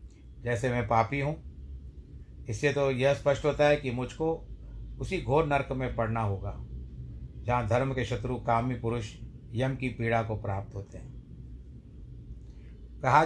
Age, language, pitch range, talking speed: 60-79, Hindi, 115-150 Hz, 145 wpm